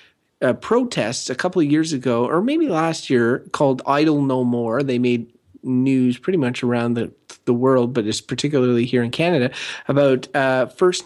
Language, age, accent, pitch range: English, 30-49, American, 125-160 Hz